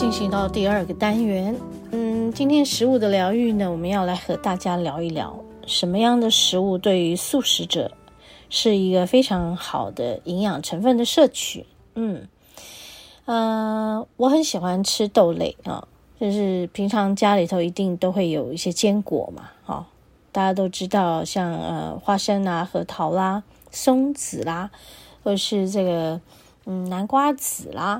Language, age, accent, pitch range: Chinese, 30-49, native, 180-225 Hz